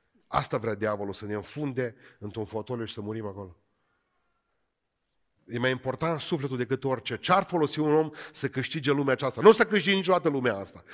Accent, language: native, Romanian